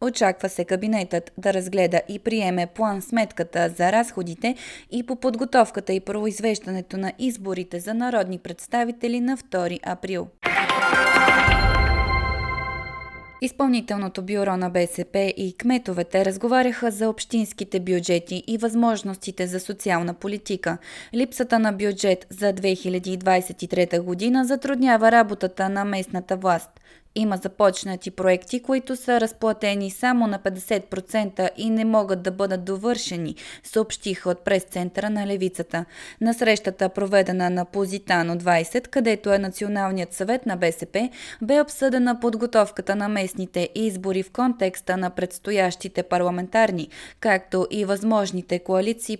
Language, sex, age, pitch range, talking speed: Bulgarian, female, 20-39, 180-220 Hz, 120 wpm